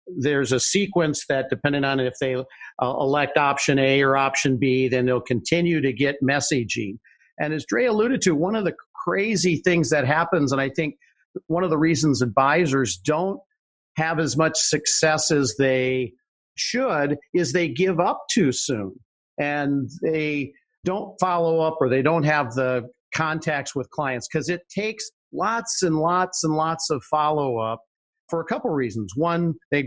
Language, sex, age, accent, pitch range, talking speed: English, male, 50-69, American, 135-175 Hz, 165 wpm